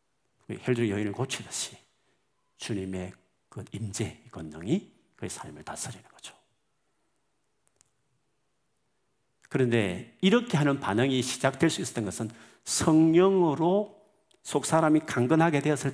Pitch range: 115-165 Hz